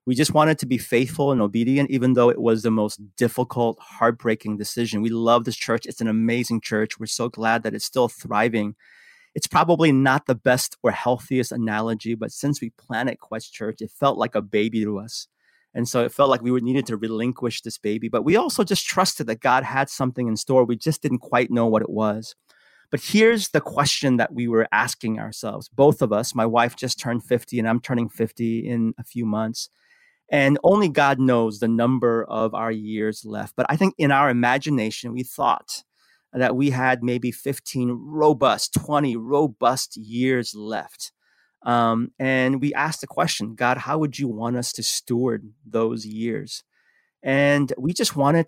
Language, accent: English, American